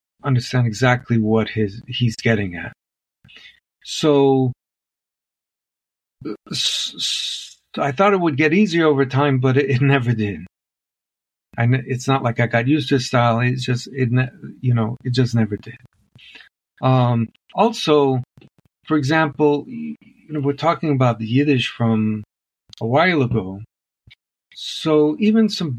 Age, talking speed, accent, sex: 50-69, 140 wpm, American, male